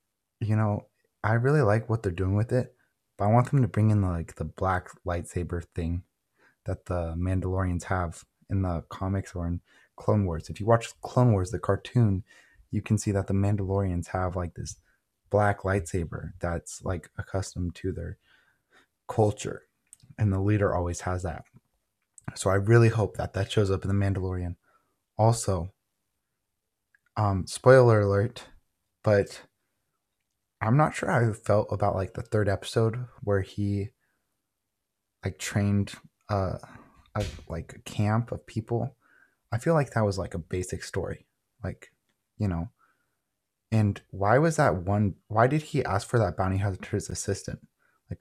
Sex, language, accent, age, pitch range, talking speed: male, English, American, 20-39, 95-115 Hz, 160 wpm